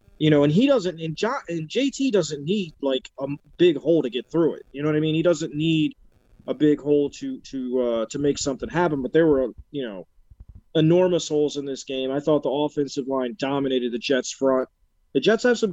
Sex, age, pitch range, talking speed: male, 30-49, 135-155 Hz, 235 wpm